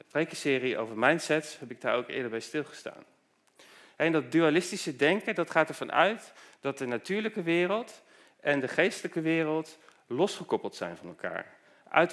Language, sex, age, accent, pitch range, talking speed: Dutch, male, 40-59, Dutch, 130-170 Hz, 155 wpm